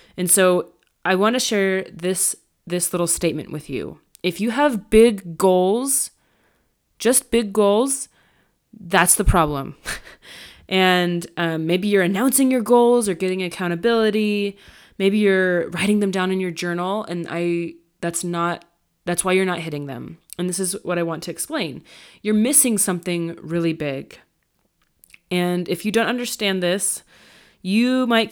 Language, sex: English, female